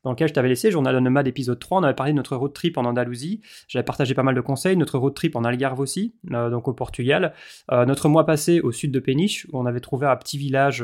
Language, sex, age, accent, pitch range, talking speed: French, male, 20-39, French, 125-145 Hz, 275 wpm